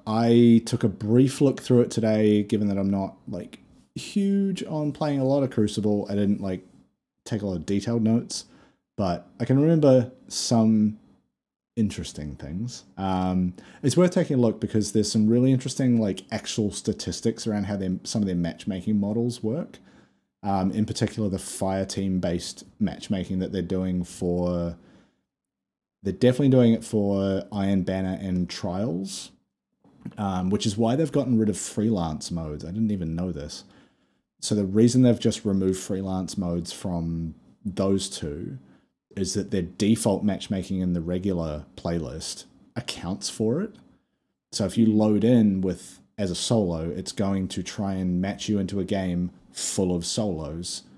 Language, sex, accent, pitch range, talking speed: English, male, Australian, 90-110 Hz, 165 wpm